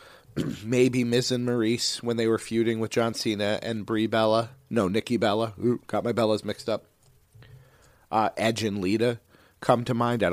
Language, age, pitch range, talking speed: English, 40-59, 95-125 Hz, 180 wpm